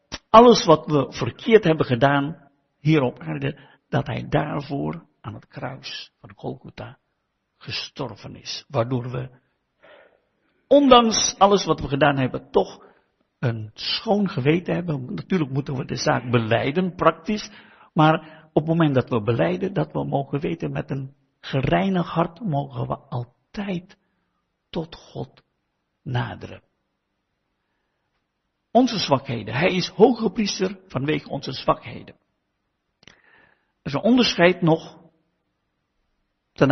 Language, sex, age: Finnish, male, 60-79